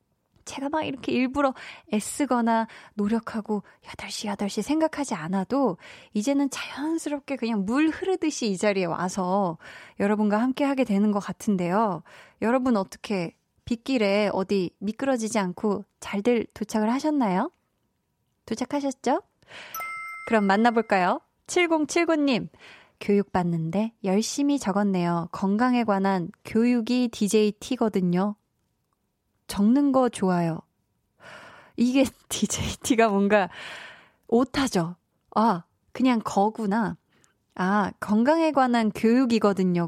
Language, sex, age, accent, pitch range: Korean, female, 20-39, native, 195-260 Hz